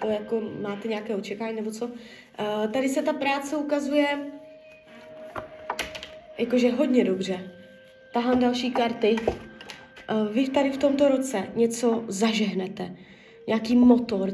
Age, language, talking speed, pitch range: 20-39, Czech, 115 wpm, 205-255 Hz